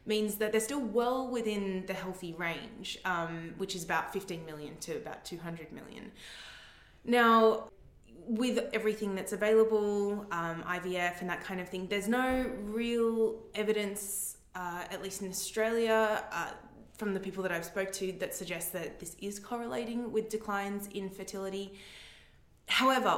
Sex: female